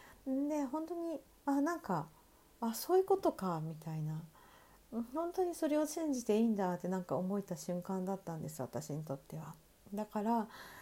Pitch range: 185-250 Hz